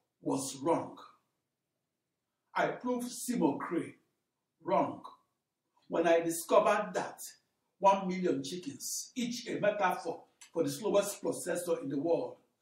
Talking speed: 115 wpm